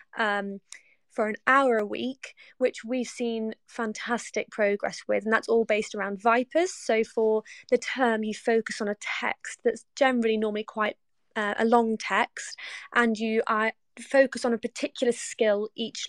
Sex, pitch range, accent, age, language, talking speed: female, 215-245 Hz, British, 20-39, English, 165 wpm